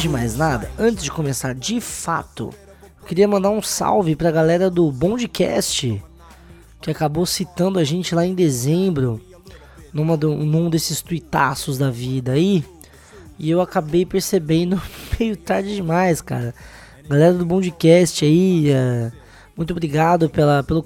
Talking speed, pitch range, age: 140 wpm, 140-175 Hz, 20-39